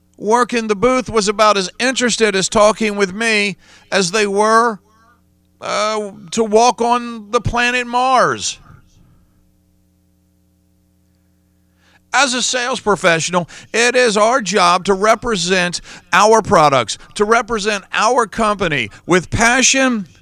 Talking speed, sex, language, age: 120 wpm, male, English, 50-69